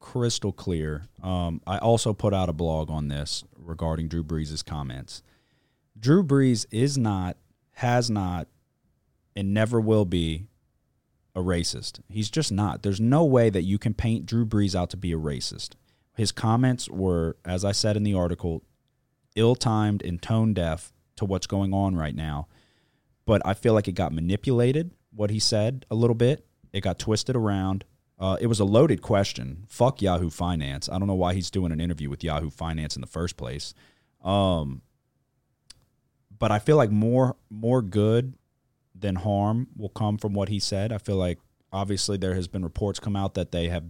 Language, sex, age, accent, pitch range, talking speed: English, male, 30-49, American, 85-110 Hz, 185 wpm